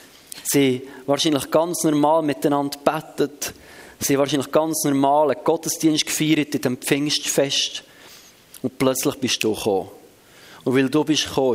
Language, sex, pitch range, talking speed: German, male, 125-160 Hz, 135 wpm